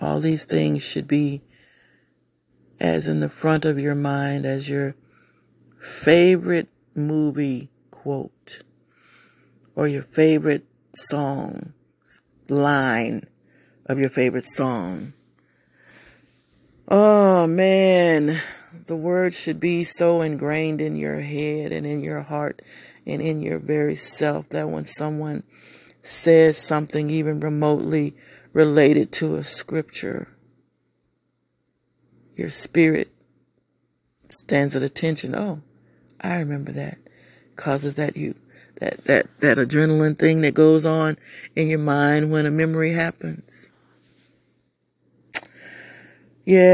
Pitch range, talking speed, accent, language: 140-160 Hz, 110 wpm, American, English